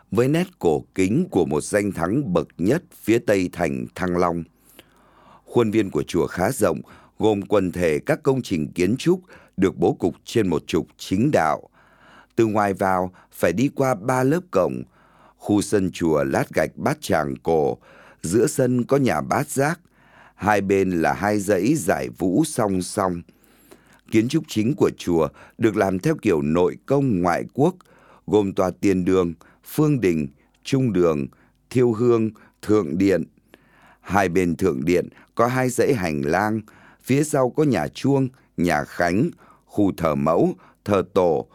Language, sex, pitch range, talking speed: Vietnamese, male, 85-130 Hz, 165 wpm